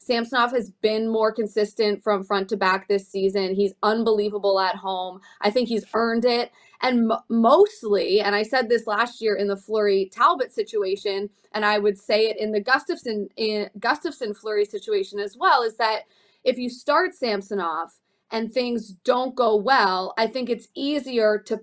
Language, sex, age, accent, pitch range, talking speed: English, female, 20-39, American, 200-260 Hz, 170 wpm